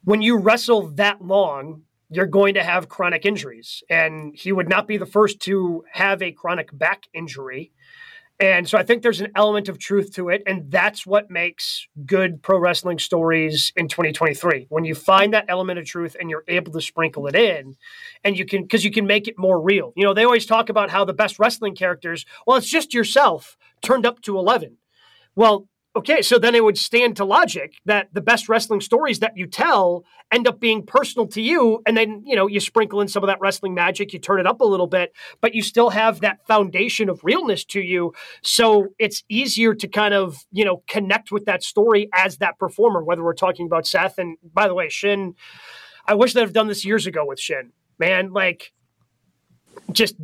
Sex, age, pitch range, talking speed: male, 30-49, 180-220 Hz, 215 wpm